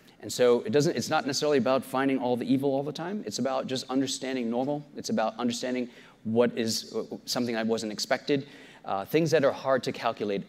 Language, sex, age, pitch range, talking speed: English, male, 30-49, 105-135 Hz, 205 wpm